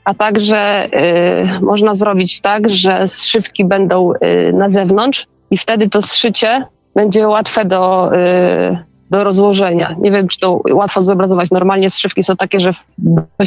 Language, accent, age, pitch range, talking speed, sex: Polish, native, 20-39, 190-225 Hz, 140 wpm, female